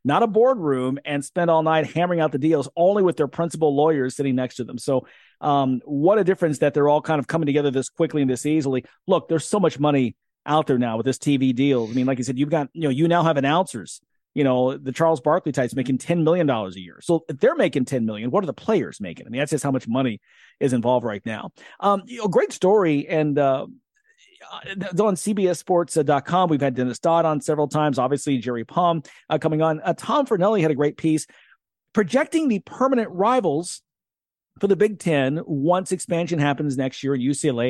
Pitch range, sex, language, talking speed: 140-195 Hz, male, English, 225 wpm